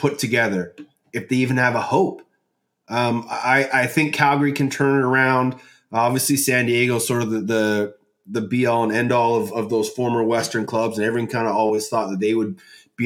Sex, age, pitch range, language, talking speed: male, 30-49, 110-140 Hz, English, 210 wpm